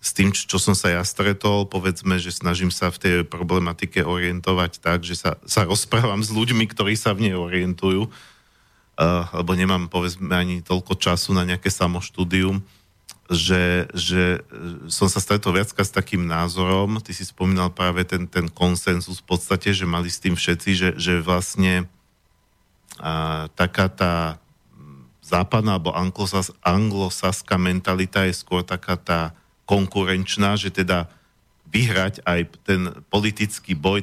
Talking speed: 145 wpm